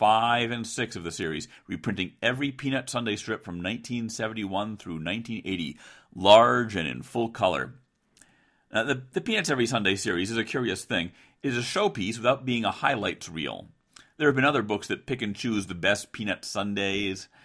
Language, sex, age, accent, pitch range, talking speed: English, male, 40-59, American, 100-130 Hz, 180 wpm